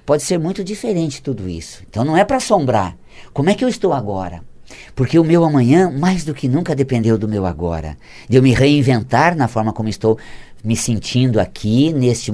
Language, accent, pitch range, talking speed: Portuguese, Brazilian, 125-195 Hz, 200 wpm